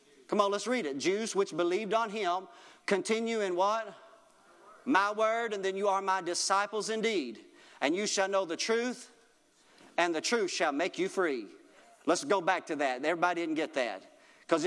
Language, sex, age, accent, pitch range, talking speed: English, male, 40-59, American, 190-240 Hz, 185 wpm